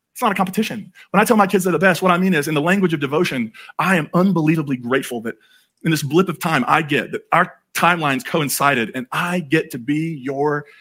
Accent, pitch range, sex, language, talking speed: American, 145-205 Hz, male, English, 240 wpm